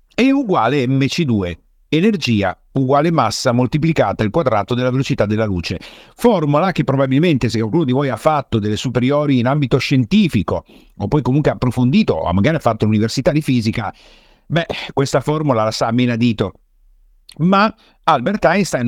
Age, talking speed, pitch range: 50-69, 155 wpm, 110-155 Hz